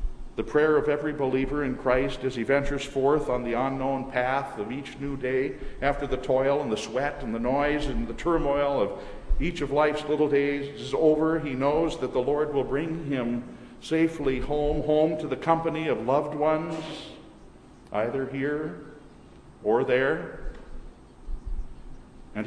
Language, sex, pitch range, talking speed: English, male, 130-155 Hz, 165 wpm